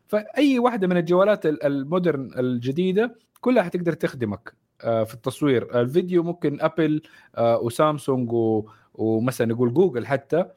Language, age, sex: Arabic, 30-49, male